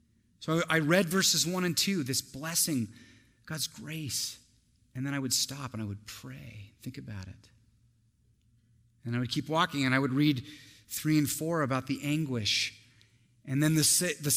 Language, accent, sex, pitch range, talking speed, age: English, American, male, 115-140 Hz, 175 wpm, 30-49